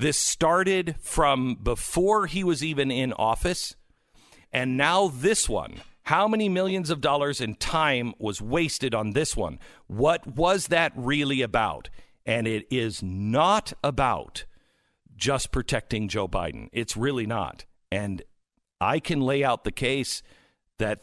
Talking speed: 145 wpm